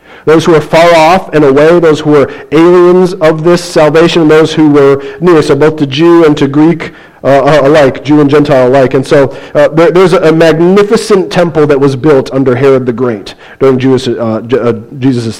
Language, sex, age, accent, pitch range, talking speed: English, male, 40-59, American, 120-145 Hz, 195 wpm